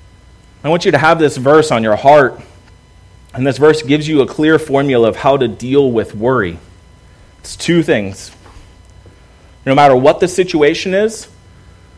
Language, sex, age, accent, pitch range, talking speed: English, male, 30-49, American, 100-160 Hz, 165 wpm